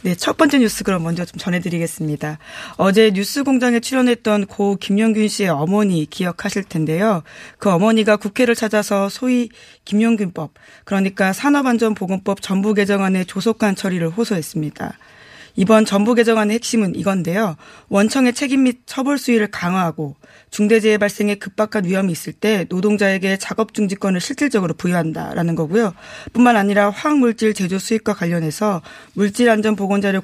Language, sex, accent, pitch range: Korean, female, native, 190-225 Hz